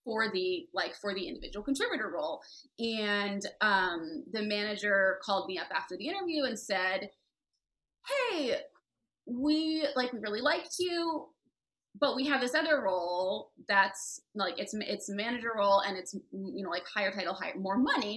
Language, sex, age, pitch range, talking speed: English, female, 20-39, 195-285 Hz, 160 wpm